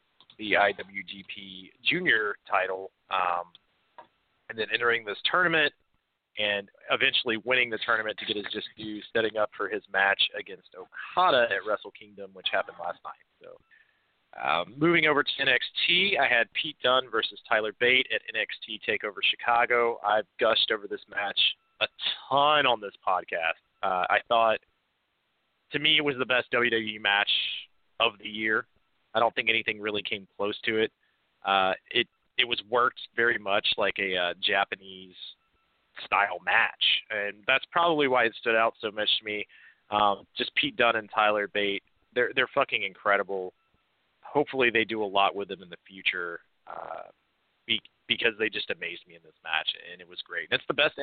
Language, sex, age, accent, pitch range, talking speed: English, male, 30-49, American, 100-125 Hz, 170 wpm